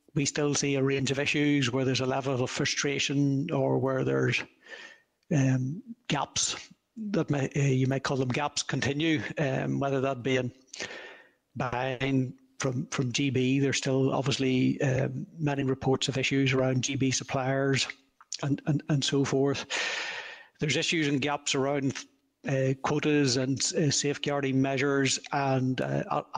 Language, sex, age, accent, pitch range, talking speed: English, male, 60-79, Irish, 135-150 Hz, 150 wpm